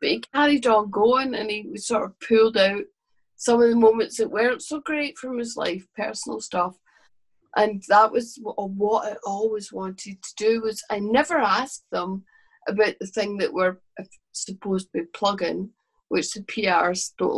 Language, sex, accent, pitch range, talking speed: English, female, British, 185-230 Hz, 175 wpm